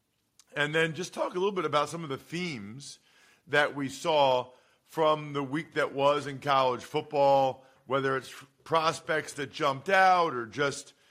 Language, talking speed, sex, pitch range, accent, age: English, 165 wpm, male, 135-165 Hz, American, 40-59